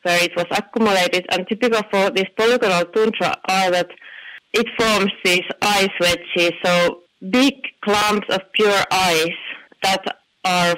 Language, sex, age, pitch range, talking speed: English, female, 30-49, 175-225 Hz, 140 wpm